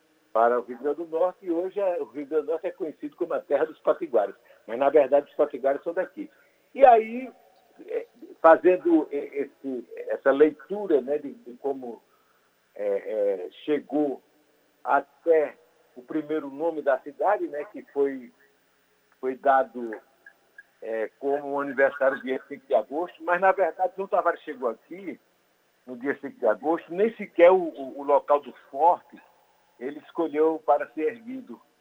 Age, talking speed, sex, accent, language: 60-79, 155 wpm, male, Brazilian, Portuguese